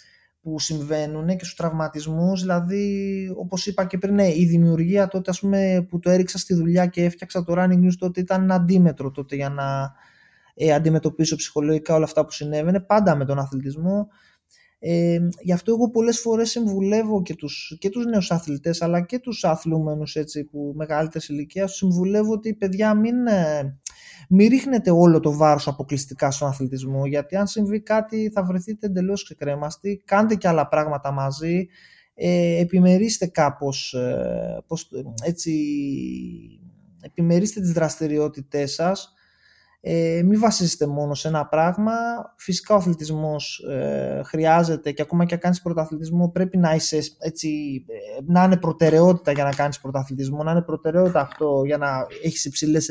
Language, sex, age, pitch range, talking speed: Greek, male, 20-39, 150-190 Hz, 150 wpm